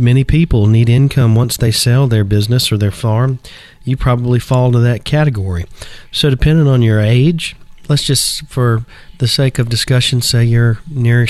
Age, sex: 40-59, male